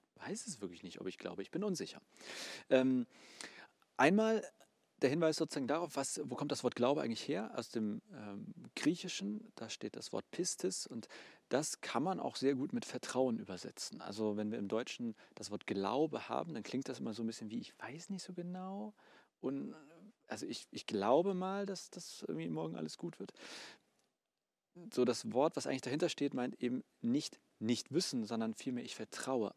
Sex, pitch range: male, 110-175 Hz